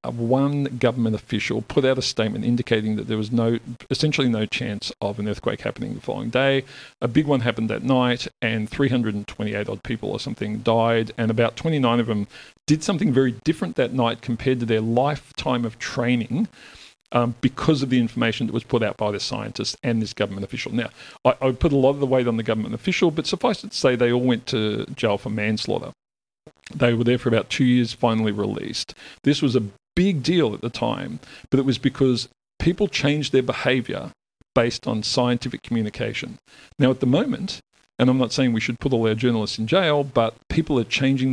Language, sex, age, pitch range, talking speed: English, male, 40-59, 110-130 Hz, 205 wpm